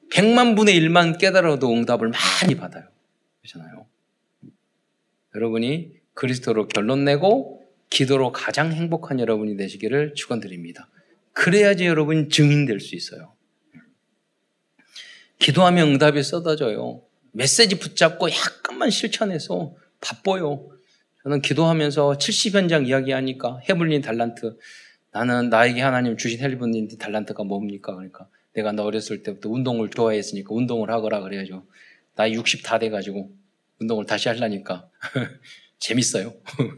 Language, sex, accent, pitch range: Korean, male, native, 105-155 Hz